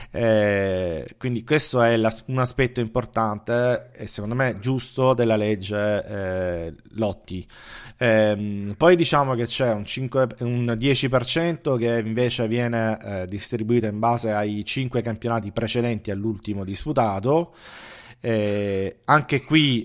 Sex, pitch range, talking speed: male, 105-125 Hz, 125 wpm